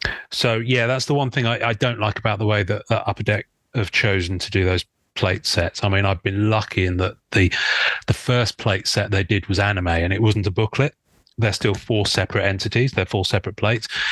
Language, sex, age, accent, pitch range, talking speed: English, male, 30-49, British, 95-115 Hz, 230 wpm